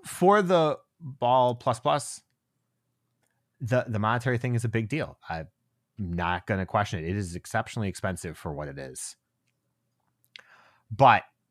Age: 30-49